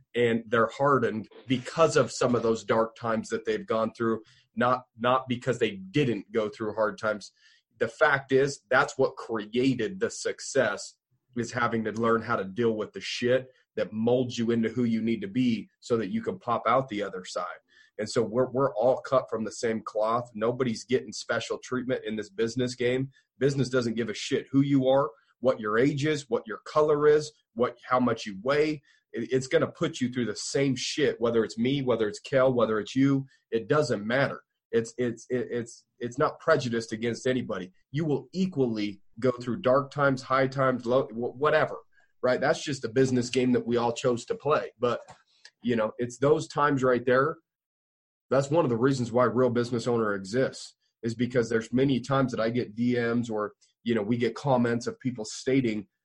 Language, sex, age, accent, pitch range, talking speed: English, male, 30-49, American, 115-135 Hz, 200 wpm